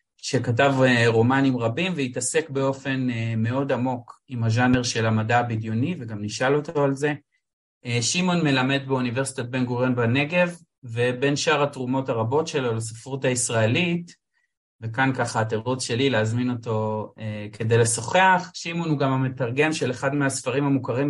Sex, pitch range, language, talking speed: male, 120-145 Hz, Hebrew, 130 wpm